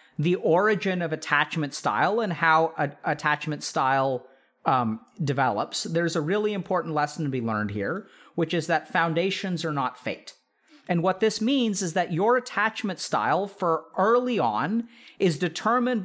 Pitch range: 155-210 Hz